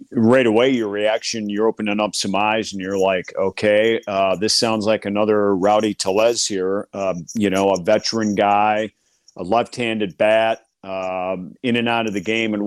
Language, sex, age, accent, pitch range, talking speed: English, male, 50-69, American, 100-115 Hz, 180 wpm